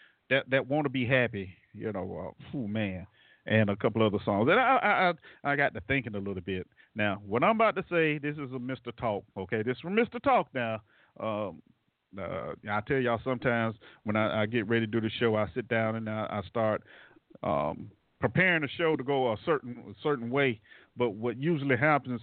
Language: English